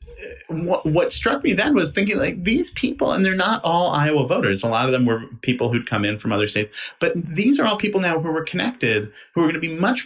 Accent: American